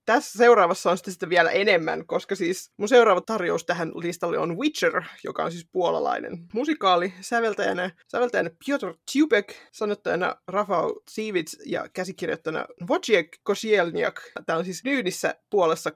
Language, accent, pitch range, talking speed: Finnish, native, 170-235 Hz, 140 wpm